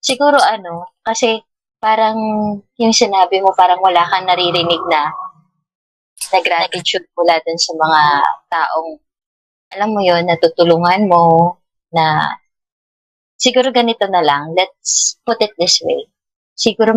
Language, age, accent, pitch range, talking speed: Filipino, 20-39, native, 170-225 Hz, 115 wpm